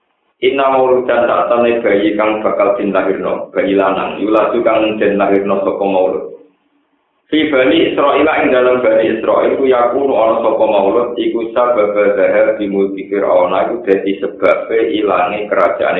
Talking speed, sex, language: 145 wpm, male, Indonesian